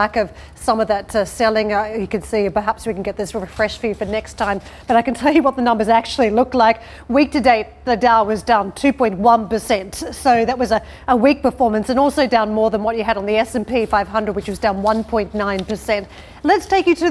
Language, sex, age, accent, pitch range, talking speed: English, female, 30-49, Australian, 215-260 Hz, 235 wpm